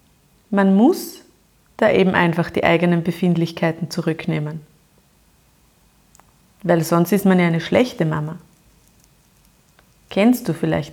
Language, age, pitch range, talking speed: German, 30-49, 170-220 Hz, 110 wpm